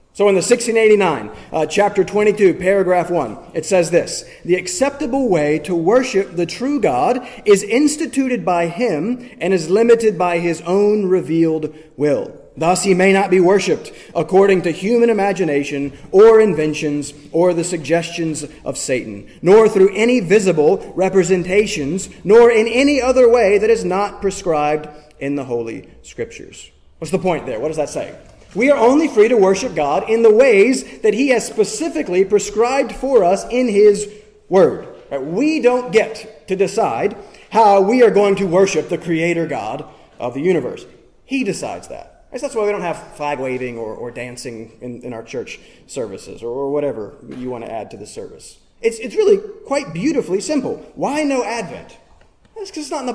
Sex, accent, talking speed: male, American, 180 wpm